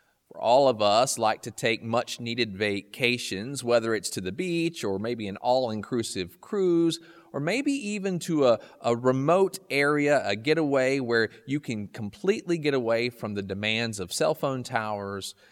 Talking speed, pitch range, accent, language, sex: 160 wpm, 105-140 Hz, American, English, male